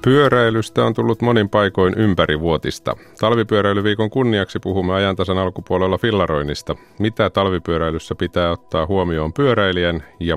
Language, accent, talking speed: Finnish, native, 115 wpm